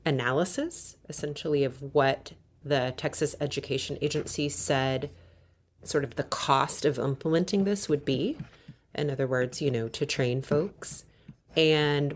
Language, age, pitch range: English, 30-49, 130-165 Hz